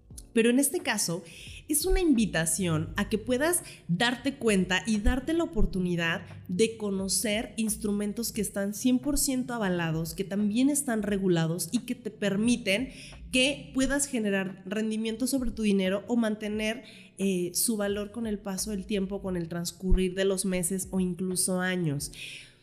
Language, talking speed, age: Spanish, 150 wpm, 30-49